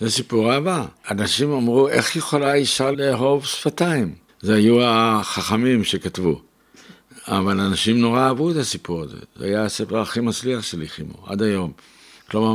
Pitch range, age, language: 100-130 Hz, 60-79, Hebrew